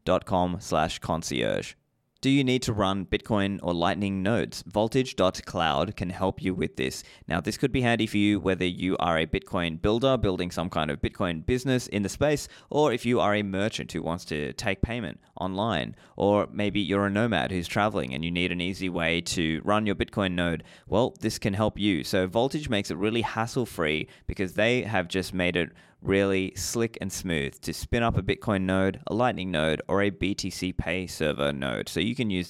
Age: 20-39